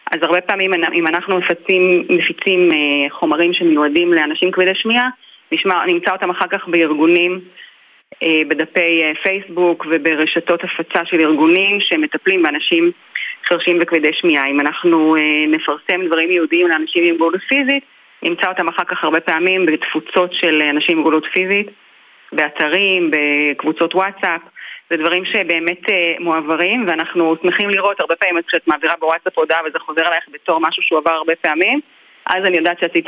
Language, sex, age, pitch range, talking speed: Hebrew, female, 30-49, 155-180 Hz, 140 wpm